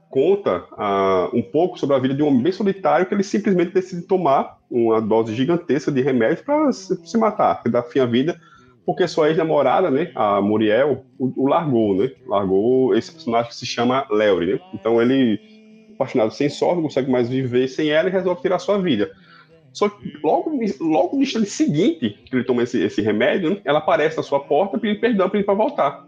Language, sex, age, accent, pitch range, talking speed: Portuguese, male, 20-39, Brazilian, 130-195 Hz, 205 wpm